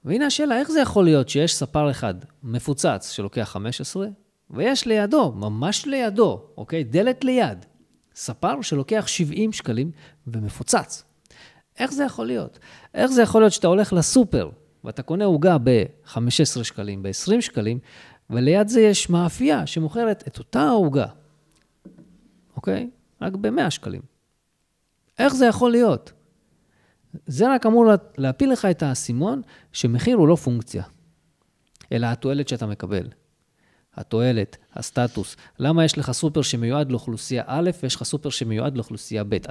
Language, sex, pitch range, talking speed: Hebrew, male, 120-190 Hz, 135 wpm